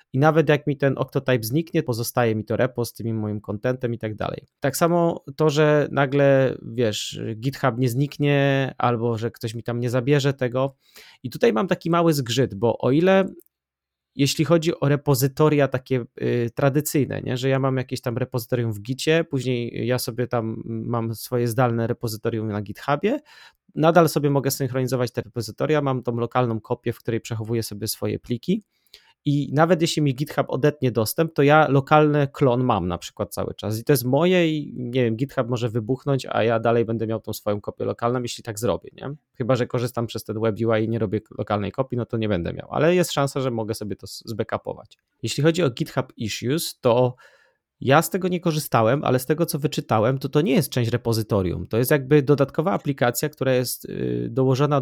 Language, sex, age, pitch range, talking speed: Polish, male, 30-49, 115-145 Hz, 195 wpm